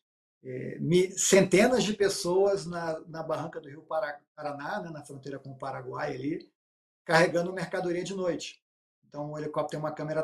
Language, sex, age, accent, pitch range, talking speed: Portuguese, male, 50-69, Brazilian, 145-175 Hz, 150 wpm